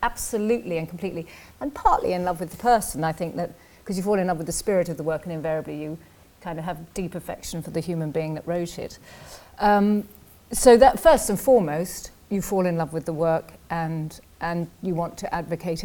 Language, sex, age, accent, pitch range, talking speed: English, female, 40-59, British, 170-220 Hz, 220 wpm